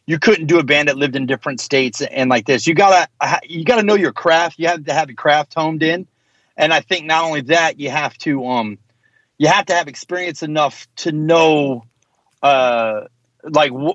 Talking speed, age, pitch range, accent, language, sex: 205 wpm, 30-49, 130-170 Hz, American, English, male